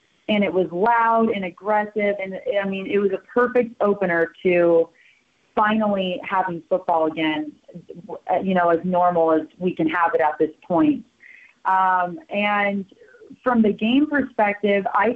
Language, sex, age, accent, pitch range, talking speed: English, female, 30-49, American, 165-210 Hz, 150 wpm